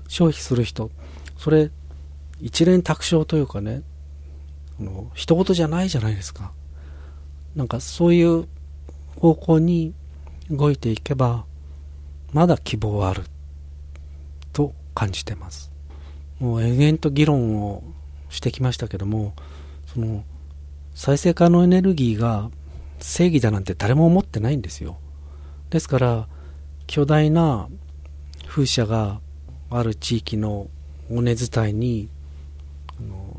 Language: Japanese